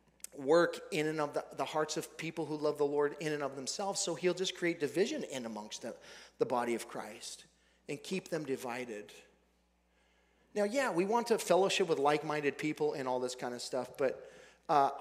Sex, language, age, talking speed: male, English, 40-59, 200 wpm